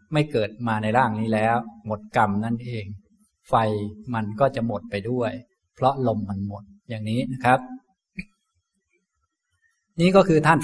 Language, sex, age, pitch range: Thai, male, 20-39, 115-155 Hz